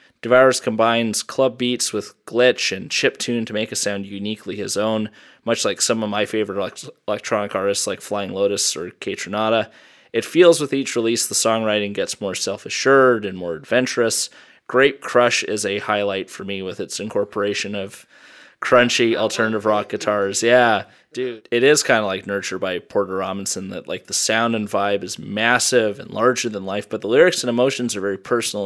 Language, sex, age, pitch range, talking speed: English, male, 20-39, 100-120 Hz, 185 wpm